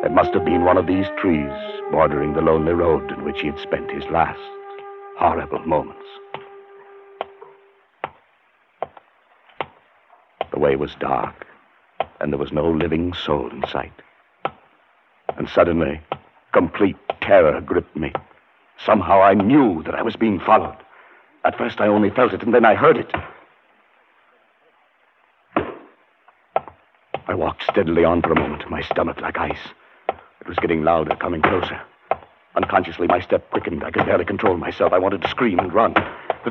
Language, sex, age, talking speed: English, male, 60-79, 150 wpm